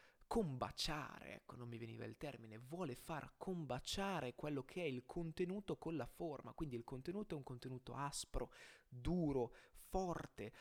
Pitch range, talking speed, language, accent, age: 120-165 Hz, 155 wpm, Italian, native, 20-39